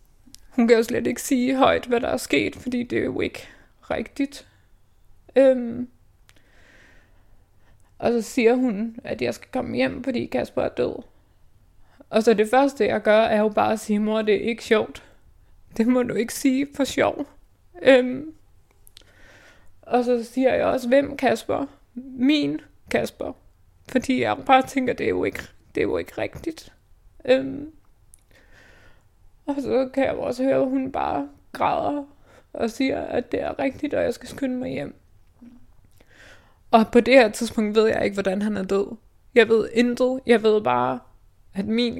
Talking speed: 175 wpm